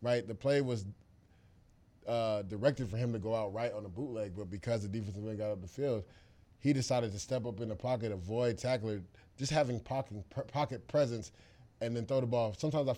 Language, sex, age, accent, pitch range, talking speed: English, male, 20-39, American, 105-120 Hz, 215 wpm